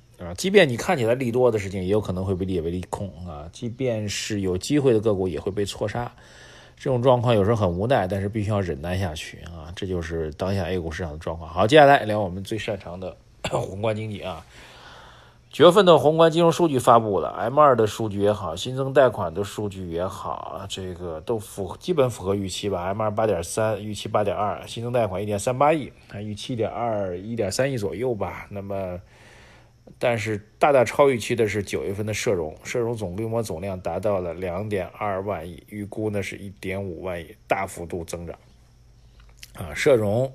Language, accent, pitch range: Chinese, native, 95-115 Hz